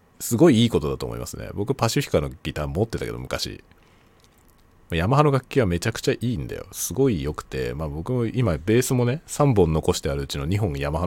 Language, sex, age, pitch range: Japanese, male, 40-59, 80-120 Hz